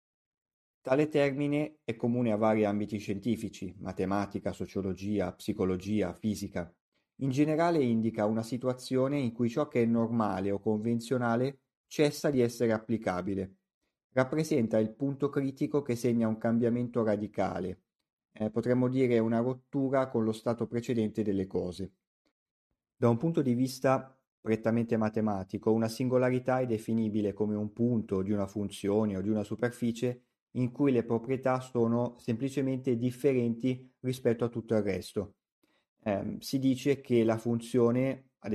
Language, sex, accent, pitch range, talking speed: Italian, male, native, 105-125 Hz, 140 wpm